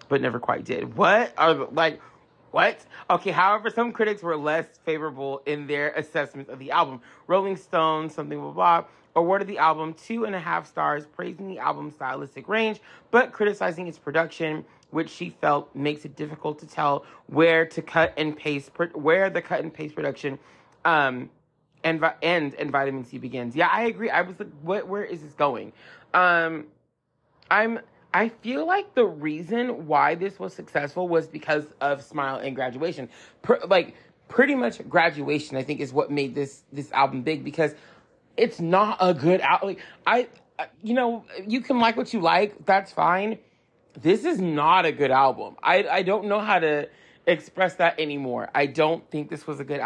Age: 30-49